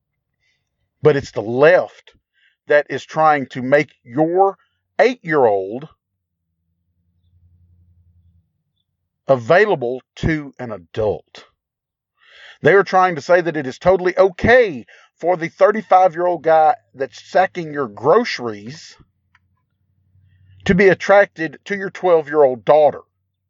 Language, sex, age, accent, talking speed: English, male, 40-59, American, 100 wpm